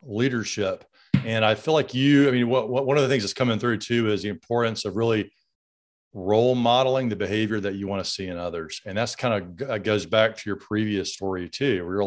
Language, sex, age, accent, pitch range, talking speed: English, male, 40-59, American, 100-125 Hz, 240 wpm